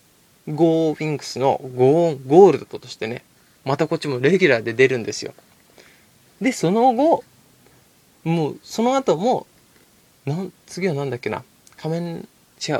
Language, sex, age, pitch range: Japanese, male, 20-39, 135-200 Hz